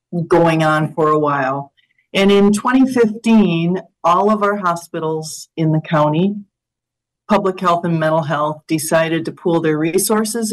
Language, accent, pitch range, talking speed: English, American, 155-190 Hz, 140 wpm